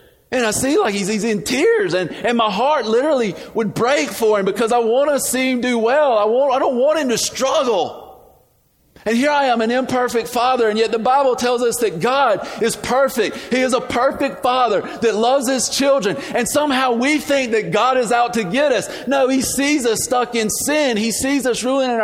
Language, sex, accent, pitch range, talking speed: English, male, American, 170-250 Hz, 220 wpm